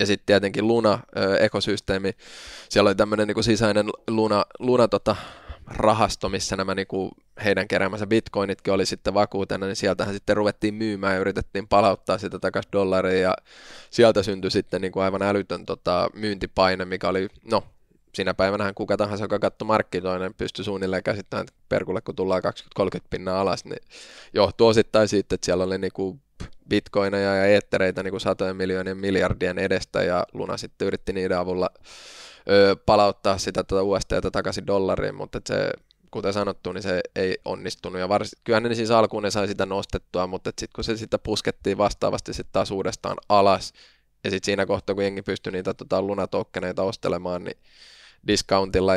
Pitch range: 95-105 Hz